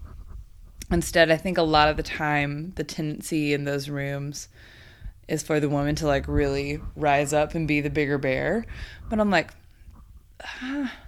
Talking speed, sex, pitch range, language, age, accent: 170 wpm, female, 130-165 Hz, English, 20-39, American